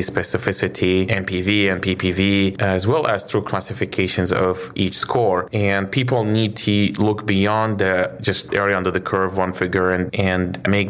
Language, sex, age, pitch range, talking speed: English, male, 20-39, 95-105 Hz, 165 wpm